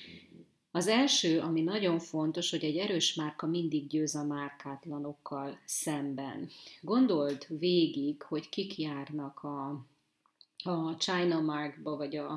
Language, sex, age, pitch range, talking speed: Hungarian, female, 30-49, 155-175 Hz, 110 wpm